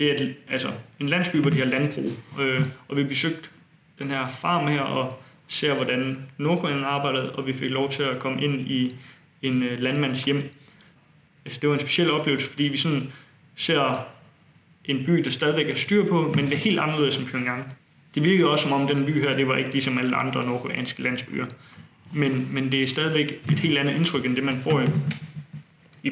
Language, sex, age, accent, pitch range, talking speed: Danish, male, 20-39, native, 130-155 Hz, 205 wpm